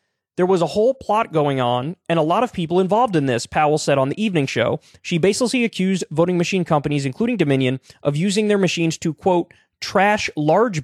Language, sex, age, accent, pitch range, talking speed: English, male, 20-39, American, 150-205 Hz, 205 wpm